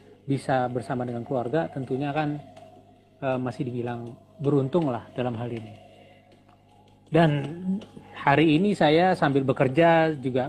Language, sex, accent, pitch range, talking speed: Indonesian, male, native, 110-155 Hz, 120 wpm